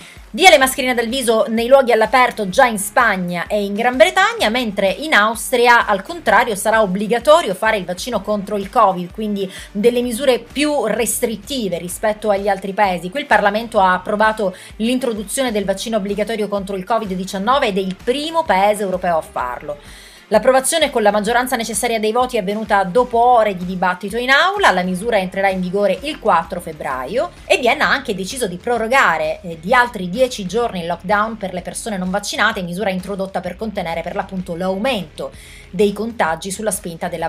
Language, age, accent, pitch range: Italian, 30-49, native, 190-245 Hz